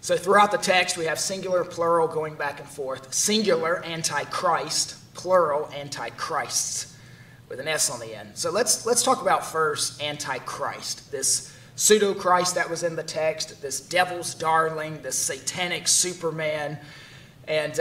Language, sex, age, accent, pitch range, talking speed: English, male, 30-49, American, 150-190 Hz, 145 wpm